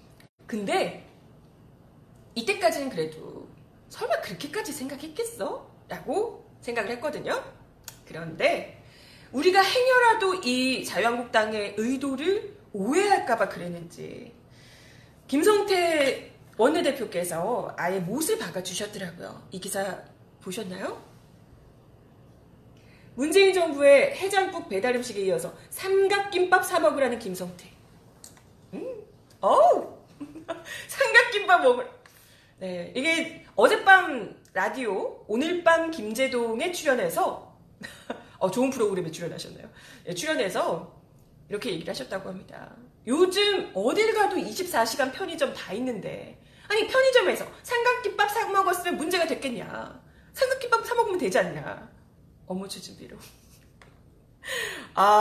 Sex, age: female, 30-49